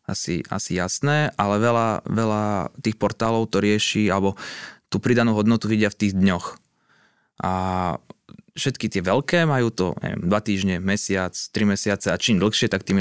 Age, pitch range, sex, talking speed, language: 20-39, 95-110 Hz, male, 160 wpm, Slovak